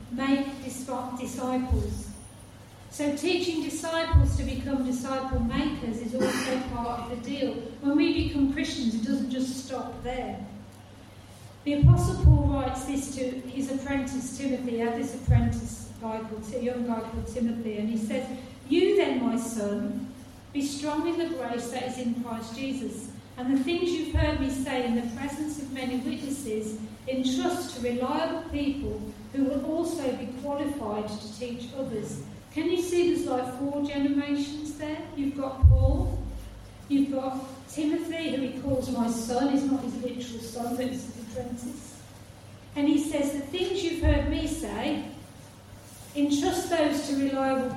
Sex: female